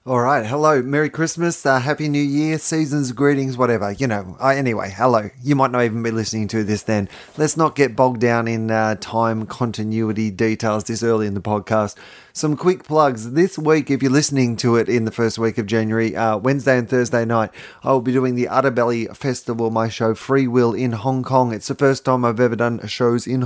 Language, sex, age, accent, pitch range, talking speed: English, male, 30-49, Australian, 115-140 Hz, 215 wpm